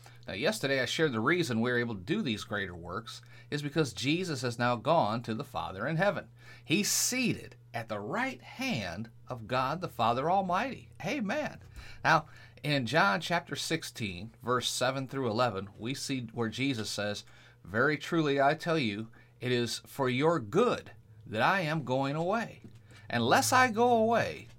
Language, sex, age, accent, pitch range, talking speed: English, male, 40-59, American, 115-145 Hz, 170 wpm